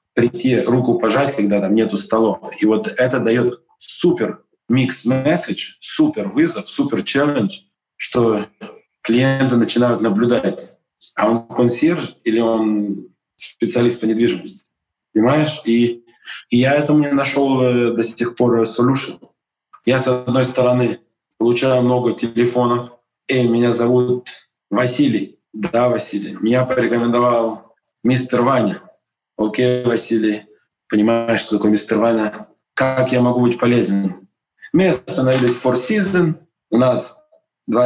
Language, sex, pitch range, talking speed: Russian, male, 115-130 Hz, 115 wpm